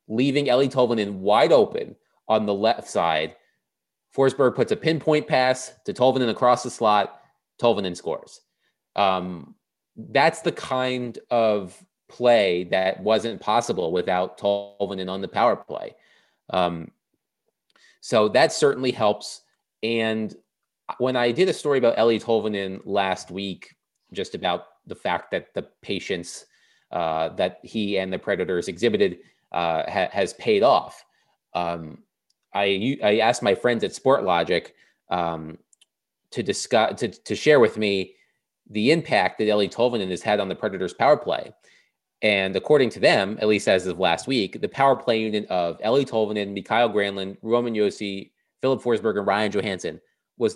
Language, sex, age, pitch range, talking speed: English, male, 30-49, 95-125 Hz, 150 wpm